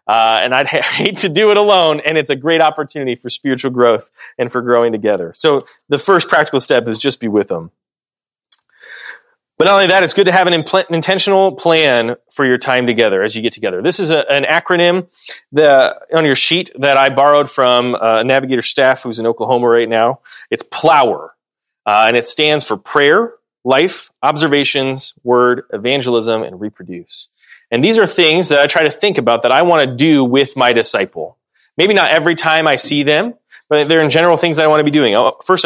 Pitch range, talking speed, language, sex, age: 125-170 Hz, 200 wpm, English, male, 30-49